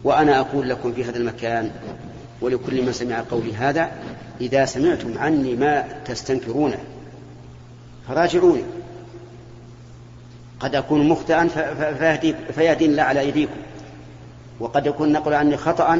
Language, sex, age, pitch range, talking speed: Arabic, male, 40-59, 120-150 Hz, 110 wpm